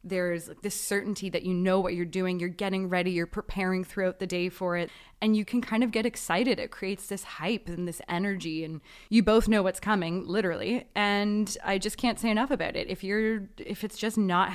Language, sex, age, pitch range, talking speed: English, female, 20-39, 170-210 Hz, 220 wpm